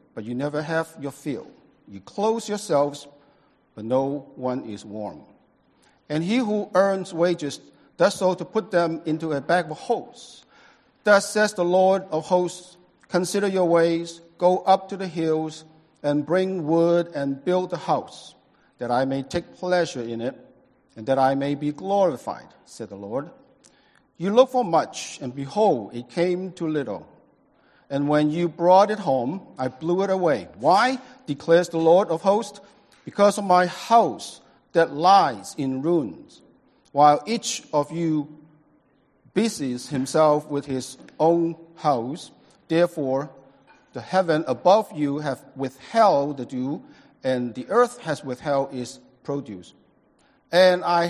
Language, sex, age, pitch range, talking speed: English, male, 50-69, 140-190 Hz, 150 wpm